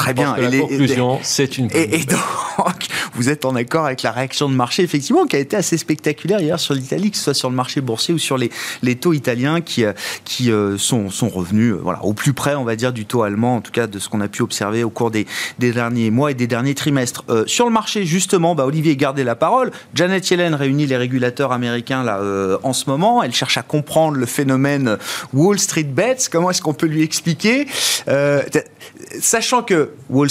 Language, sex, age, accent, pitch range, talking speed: French, male, 30-49, French, 120-155 Hz, 225 wpm